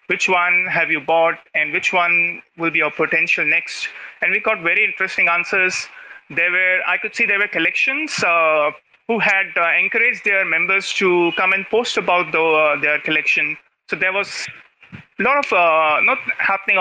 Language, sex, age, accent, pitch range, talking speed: English, male, 30-49, Indian, 165-210 Hz, 185 wpm